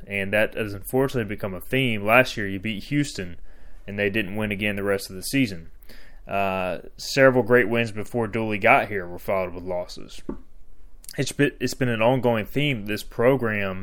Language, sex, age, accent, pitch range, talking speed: English, male, 20-39, American, 95-120 Hz, 185 wpm